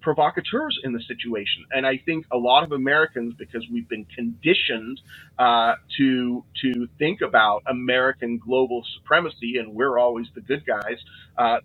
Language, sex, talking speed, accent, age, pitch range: English, male, 155 wpm, American, 30-49, 115-150 Hz